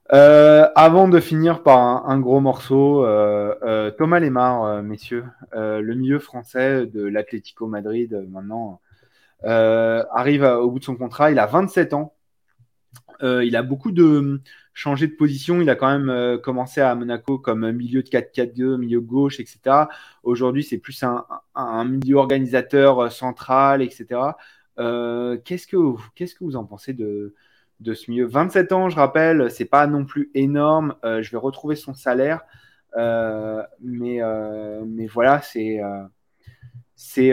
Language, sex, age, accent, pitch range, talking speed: French, male, 20-39, French, 115-140 Hz, 175 wpm